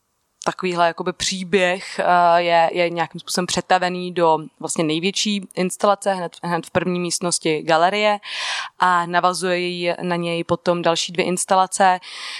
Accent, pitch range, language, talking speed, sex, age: native, 170-185 Hz, Czech, 125 wpm, female, 20-39